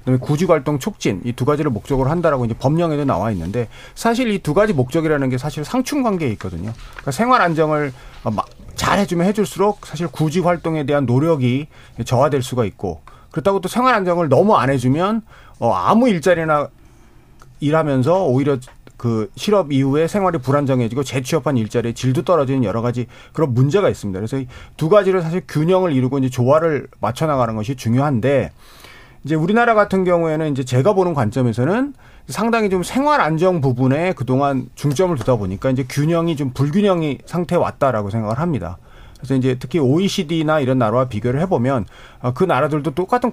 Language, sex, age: Korean, male, 40-59